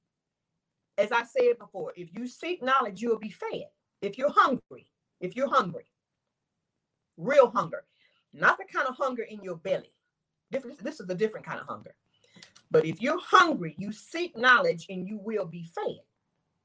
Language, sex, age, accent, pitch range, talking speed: English, female, 40-59, American, 185-275 Hz, 165 wpm